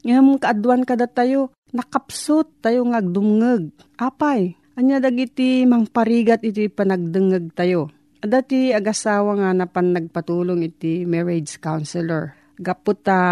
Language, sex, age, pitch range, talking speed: Filipino, female, 40-59, 180-235 Hz, 115 wpm